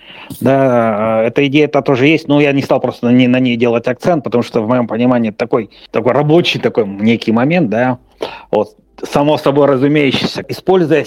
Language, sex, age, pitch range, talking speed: Russian, male, 30-49, 110-135 Hz, 185 wpm